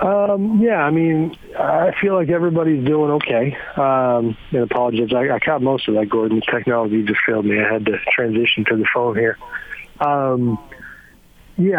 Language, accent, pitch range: English, American, 115-130 Hz